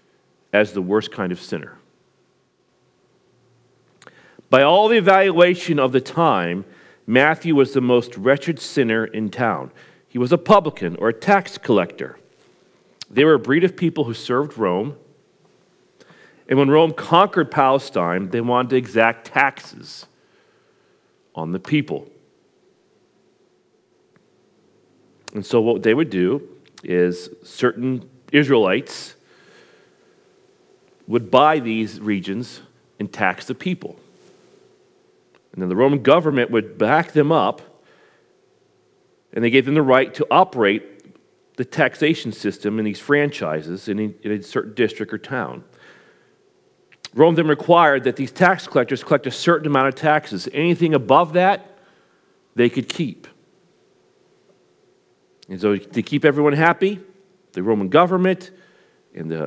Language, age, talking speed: English, 40-59, 130 wpm